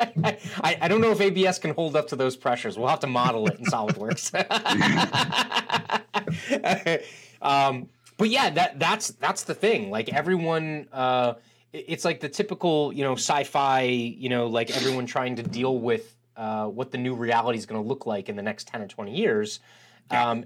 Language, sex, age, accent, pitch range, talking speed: English, male, 30-49, American, 115-140 Hz, 180 wpm